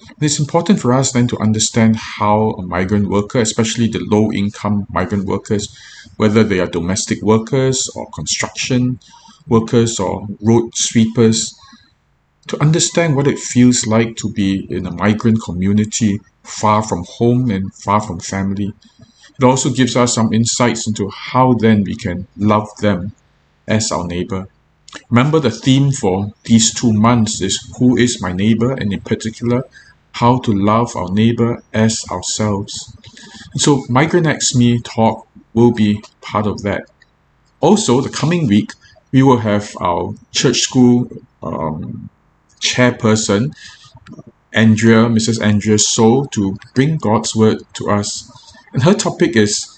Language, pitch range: English, 105-125 Hz